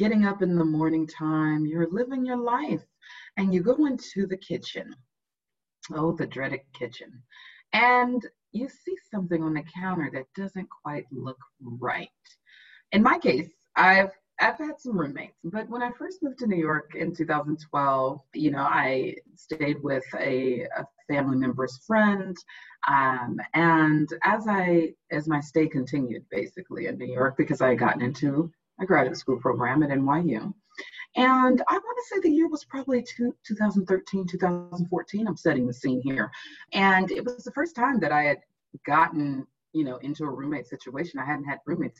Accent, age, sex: American, 30-49, female